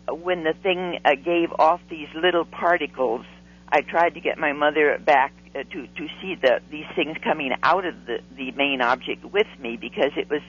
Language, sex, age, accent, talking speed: English, female, 60-79, American, 200 wpm